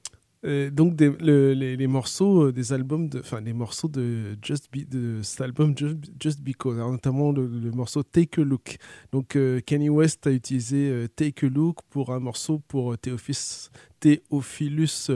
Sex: male